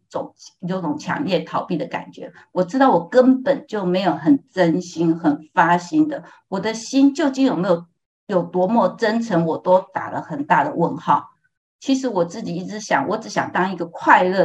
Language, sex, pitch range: Chinese, female, 175-255 Hz